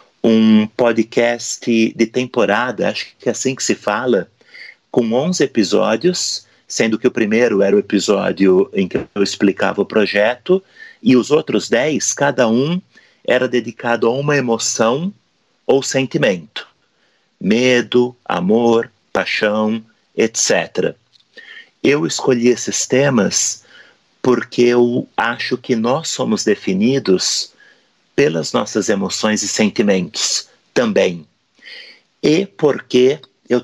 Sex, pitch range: male, 110-140 Hz